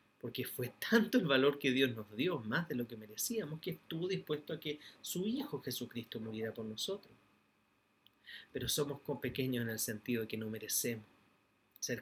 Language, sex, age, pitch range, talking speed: Spanish, male, 30-49, 110-130 Hz, 180 wpm